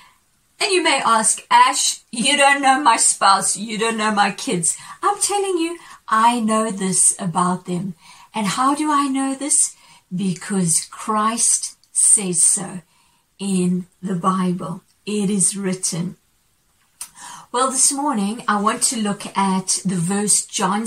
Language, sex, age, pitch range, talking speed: English, female, 50-69, 185-235 Hz, 145 wpm